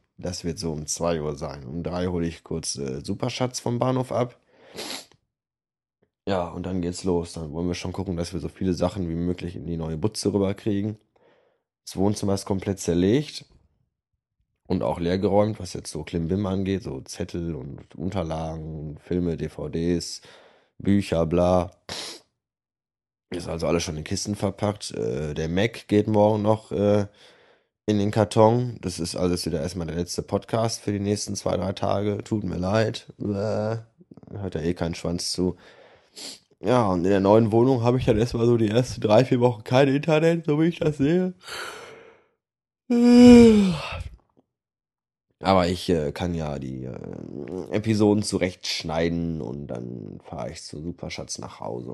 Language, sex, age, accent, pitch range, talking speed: German, male, 20-39, German, 85-110 Hz, 160 wpm